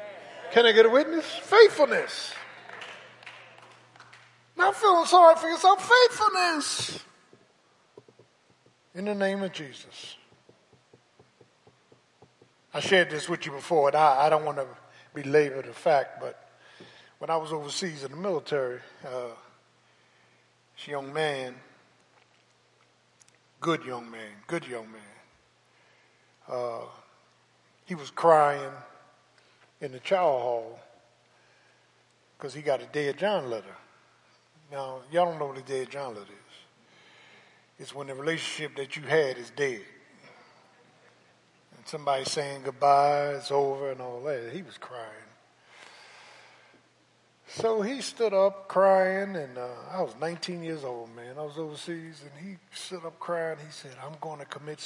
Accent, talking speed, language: American, 135 wpm, English